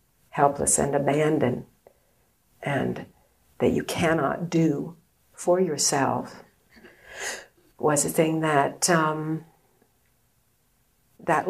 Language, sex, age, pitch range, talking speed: English, female, 60-79, 140-190 Hz, 85 wpm